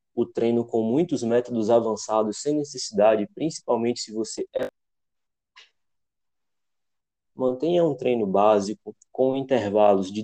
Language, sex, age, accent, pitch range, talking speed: Portuguese, male, 20-39, Brazilian, 110-135 Hz, 110 wpm